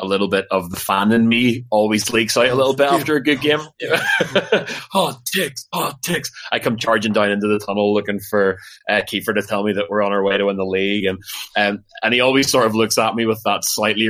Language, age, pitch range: English, 20-39, 100-120 Hz